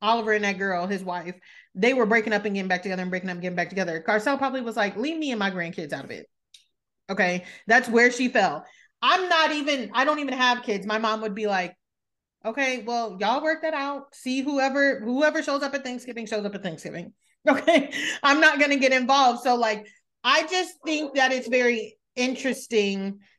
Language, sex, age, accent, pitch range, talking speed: English, female, 30-49, American, 190-255 Hz, 215 wpm